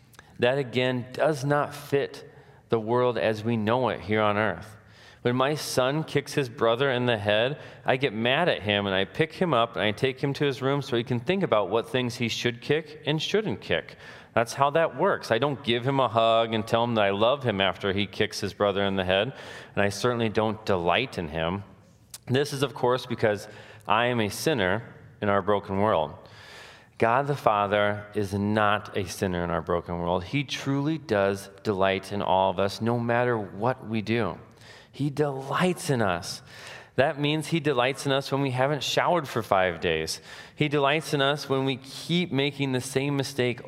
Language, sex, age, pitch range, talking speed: English, male, 30-49, 105-135 Hz, 205 wpm